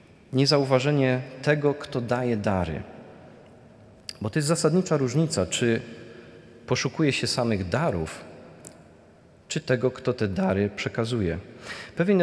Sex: male